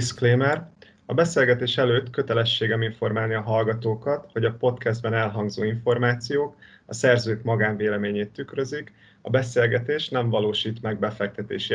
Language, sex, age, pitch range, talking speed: Hungarian, male, 30-49, 105-125 Hz, 120 wpm